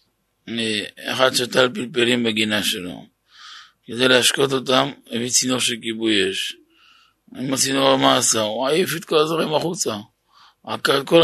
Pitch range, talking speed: 115-145 Hz, 125 wpm